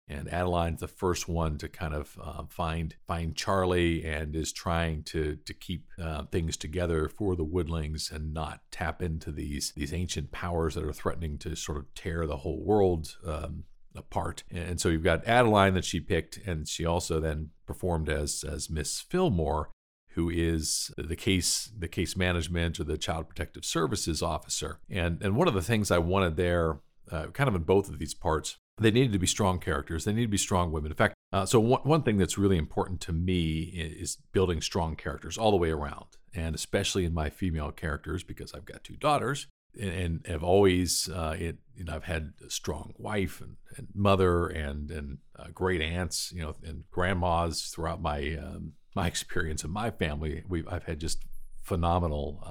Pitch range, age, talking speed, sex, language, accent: 80-95 Hz, 50-69, 195 wpm, male, English, American